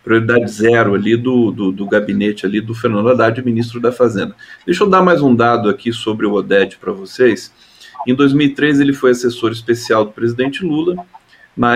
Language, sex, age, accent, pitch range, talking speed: Portuguese, male, 40-59, Brazilian, 115-160 Hz, 180 wpm